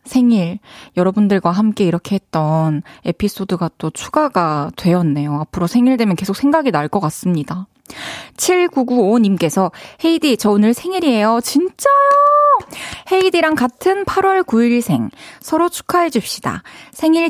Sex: female